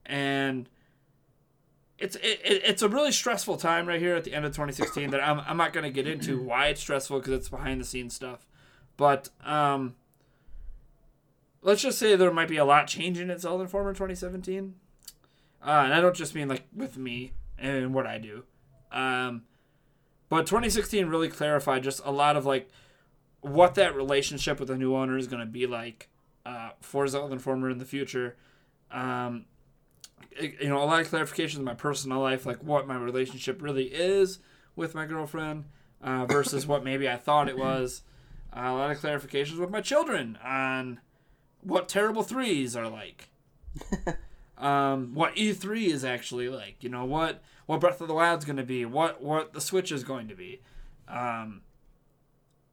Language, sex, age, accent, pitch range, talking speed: English, male, 20-39, American, 130-165 Hz, 180 wpm